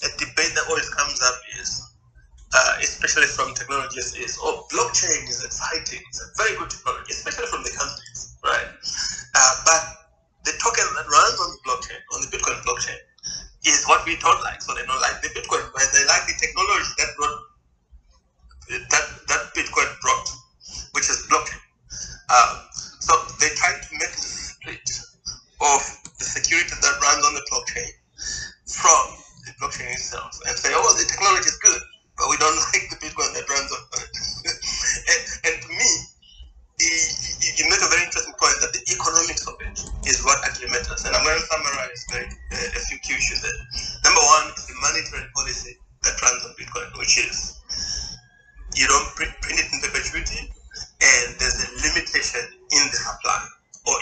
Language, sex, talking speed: English, male, 170 wpm